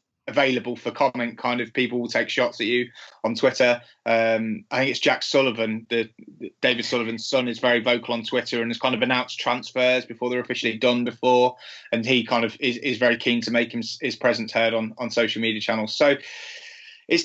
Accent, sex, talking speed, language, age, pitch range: British, male, 210 wpm, English, 20-39, 115-130 Hz